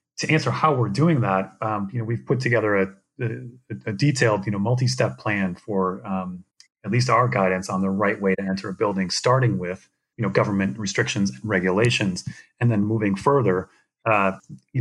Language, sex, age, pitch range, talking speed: English, male, 30-49, 100-125 Hz, 195 wpm